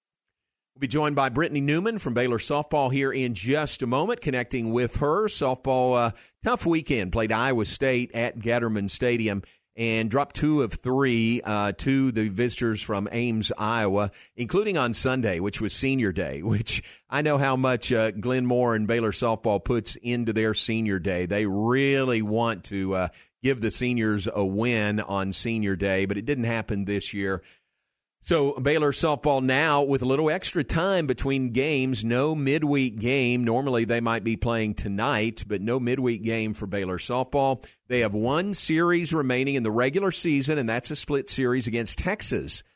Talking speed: 175 wpm